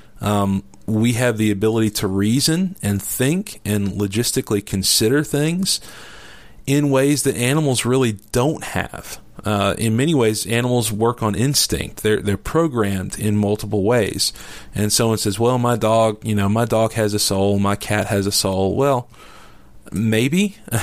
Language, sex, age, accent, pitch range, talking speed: English, male, 40-59, American, 105-130 Hz, 155 wpm